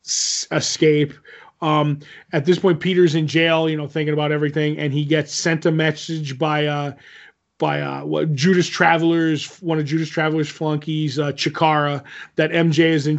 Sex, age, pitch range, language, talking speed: male, 30-49, 150-175 Hz, English, 170 wpm